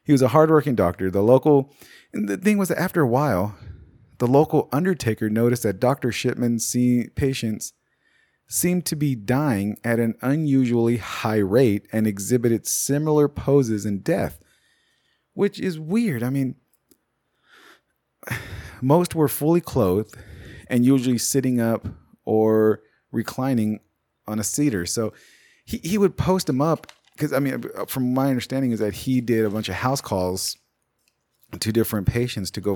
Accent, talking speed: American, 155 wpm